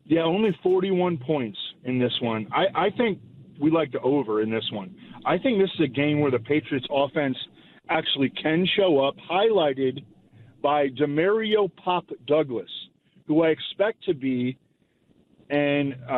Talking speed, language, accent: 155 wpm, English, American